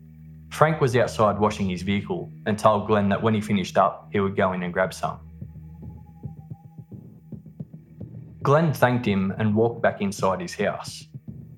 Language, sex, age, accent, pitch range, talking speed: English, male, 20-39, Australian, 95-120 Hz, 155 wpm